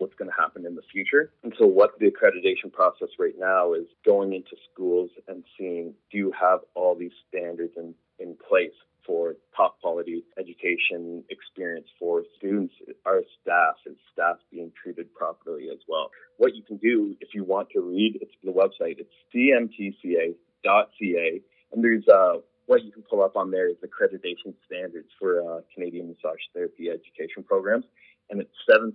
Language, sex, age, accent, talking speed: English, male, 30-49, American, 170 wpm